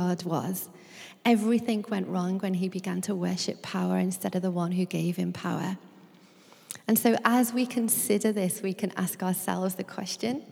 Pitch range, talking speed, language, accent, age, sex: 195-225 Hz, 170 wpm, English, British, 30-49, female